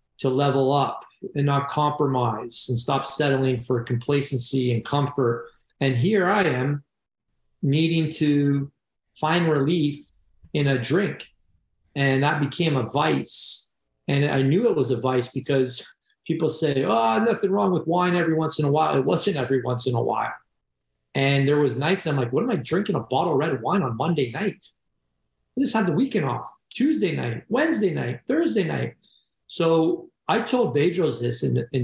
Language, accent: English, American